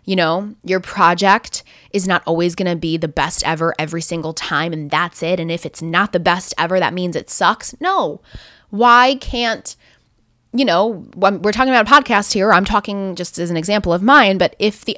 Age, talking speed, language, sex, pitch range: 20-39, 210 wpm, English, female, 170-215 Hz